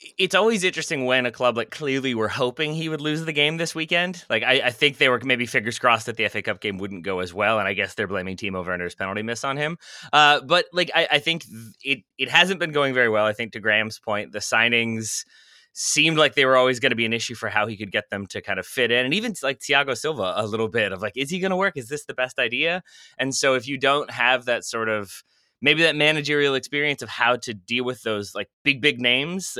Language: English